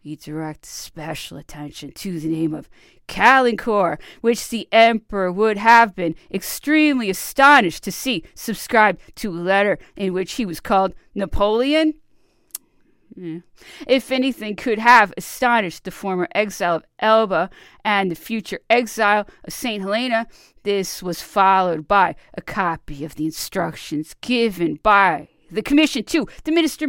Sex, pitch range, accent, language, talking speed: female, 175-255 Hz, American, English, 140 wpm